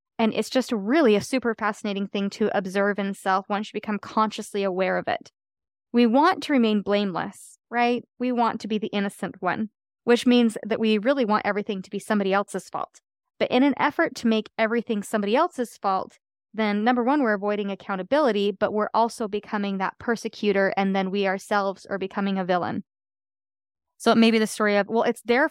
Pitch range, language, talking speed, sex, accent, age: 200-235 Hz, English, 200 wpm, female, American, 20-39